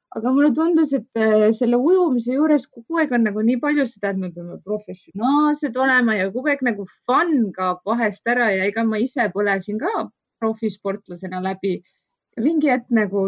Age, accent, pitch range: 20-39, Finnish, 195-245 Hz